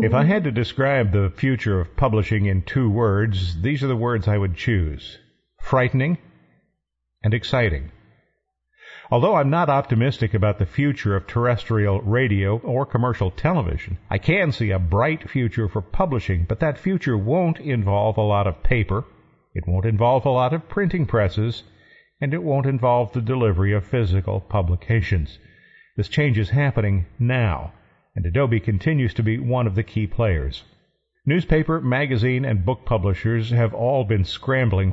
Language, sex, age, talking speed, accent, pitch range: English, male, 50-69, 160 wpm, American, 105-135 Hz